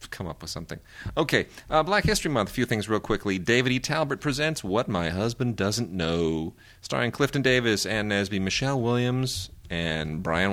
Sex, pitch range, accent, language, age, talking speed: male, 90-115 Hz, American, English, 30-49, 180 wpm